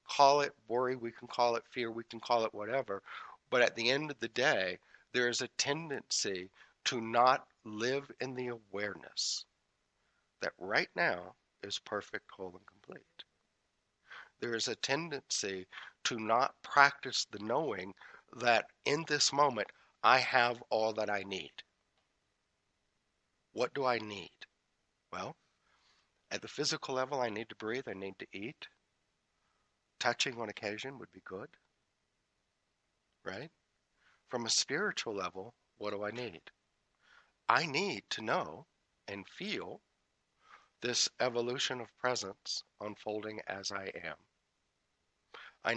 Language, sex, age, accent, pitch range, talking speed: English, male, 60-79, American, 105-130 Hz, 135 wpm